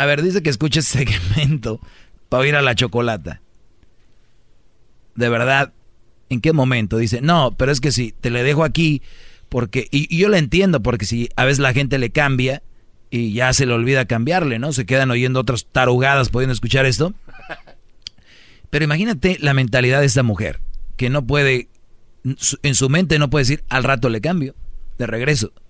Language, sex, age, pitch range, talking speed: Spanish, male, 40-59, 115-145 Hz, 185 wpm